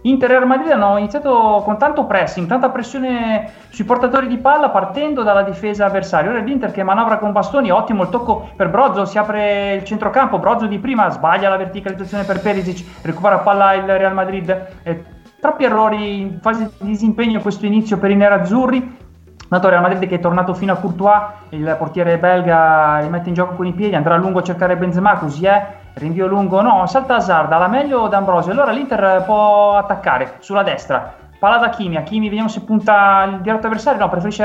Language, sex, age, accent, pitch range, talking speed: Italian, male, 30-49, native, 180-215 Hz, 195 wpm